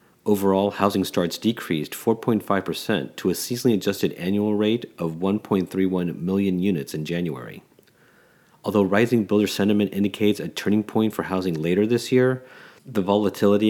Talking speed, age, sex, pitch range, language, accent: 140 wpm, 40-59, male, 90-110 Hz, English, American